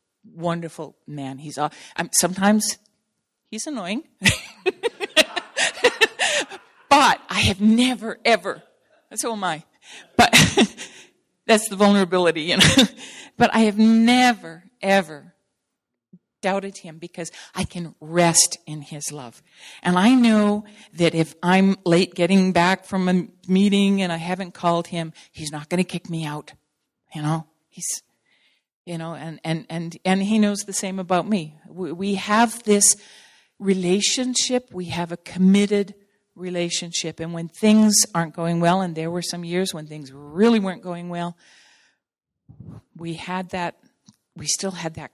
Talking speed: 150 wpm